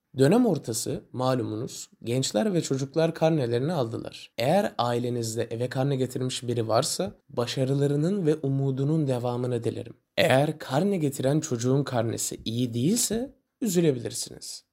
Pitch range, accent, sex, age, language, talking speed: 130-175 Hz, native, male, 20-39, Turkish, 115 wpm